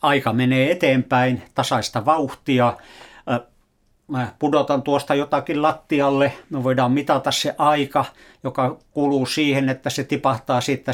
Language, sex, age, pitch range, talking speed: Finnish, male, 60-79, 125-145 Hz, 115 wpm